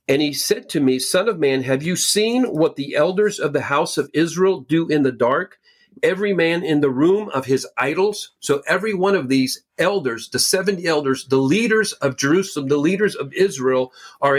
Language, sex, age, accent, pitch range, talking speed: English, male, 50-69, American, 130-175 Hz, 205 wpm